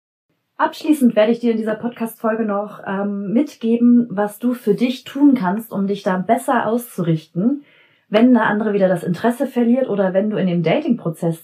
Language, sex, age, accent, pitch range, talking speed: German, female, 30-49, German, 190-240 Hz, 180 wpm